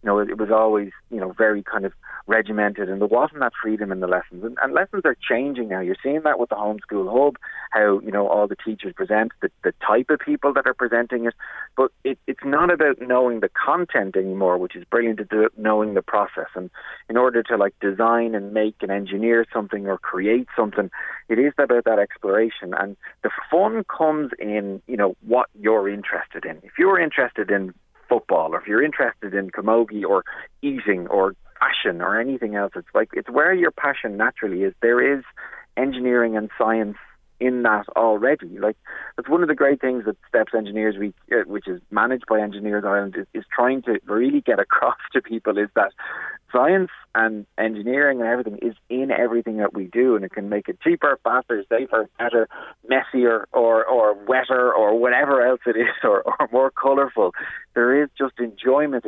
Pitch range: 105-125 Hz